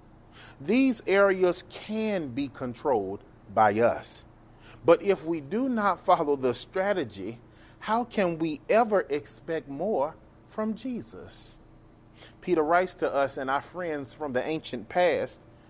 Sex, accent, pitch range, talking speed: male, American, 115-185 Hz, 130 wpm